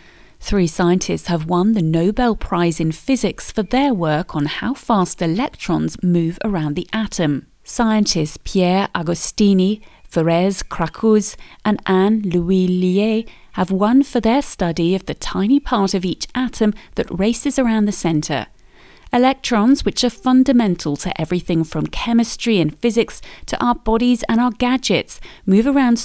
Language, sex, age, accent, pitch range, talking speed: English, female, 30-49, British, 165-225 Hz, 145 wpm